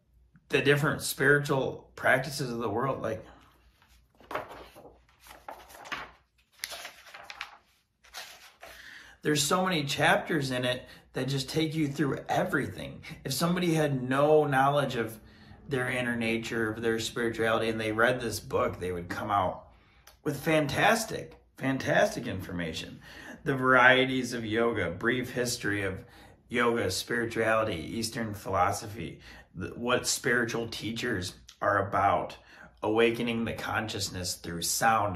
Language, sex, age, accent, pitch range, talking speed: English, male, 30-49, American, 95-125 Hz, 115 wpm